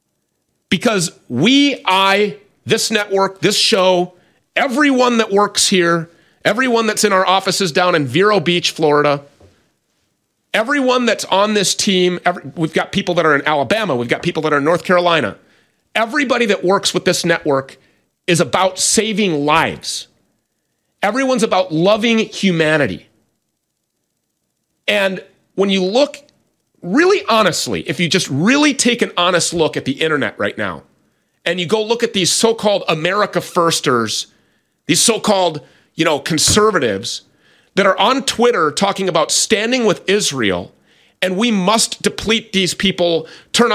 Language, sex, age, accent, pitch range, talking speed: English, male, 40-59, American, 170-220 Hz, 145 wpm